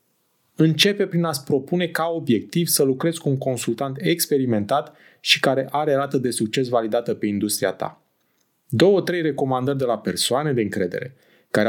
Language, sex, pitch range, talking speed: Romanian, male, 120-160 Hz, 155 wpm